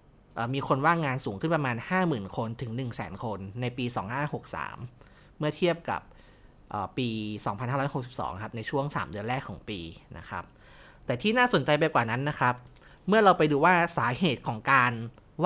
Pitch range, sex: 115-155 Hz, male